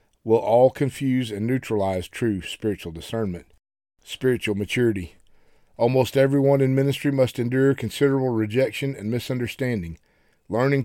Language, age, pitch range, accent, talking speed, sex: English, 50-69, 105-130 Hz, American, 115 wpm, male